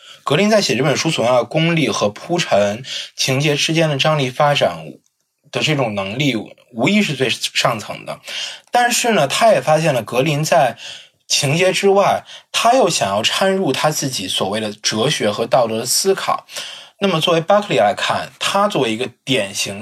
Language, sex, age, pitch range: Chinese, male, 20-39, 130-170 Hz